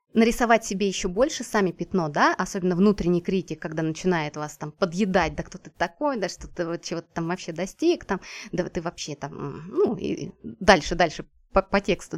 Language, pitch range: Russian, 170-230 Hz